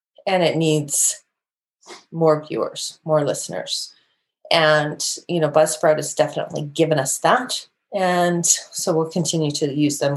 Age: 30-49